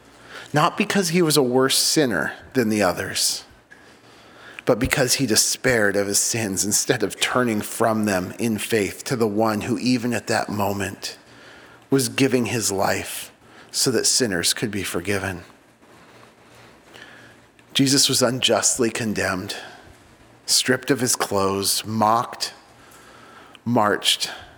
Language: English